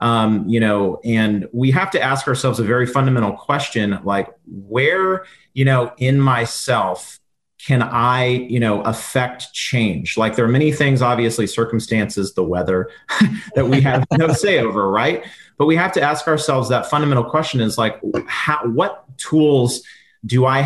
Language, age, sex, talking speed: English, 30-49, male, 165 wpm